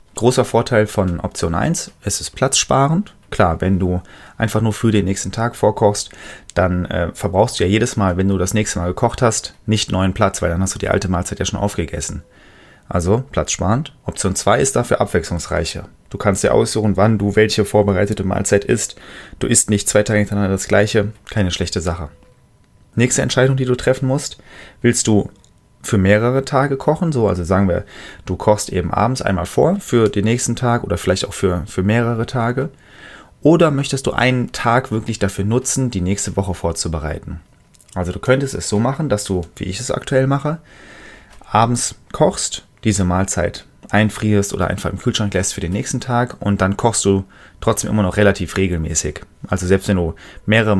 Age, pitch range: 30-49, 90-115 Hz